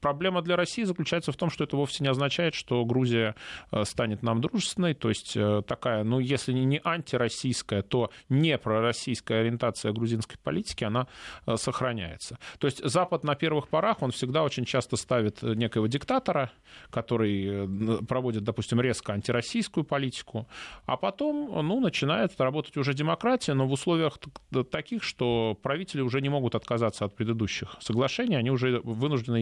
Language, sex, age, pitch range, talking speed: Russian, male, 20-39, 115-140 Hz, 150 wpm